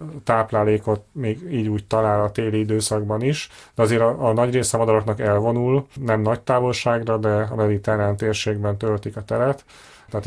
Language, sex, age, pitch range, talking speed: Hungarian, male, 30-49, 105-120 Hz, 170 wpm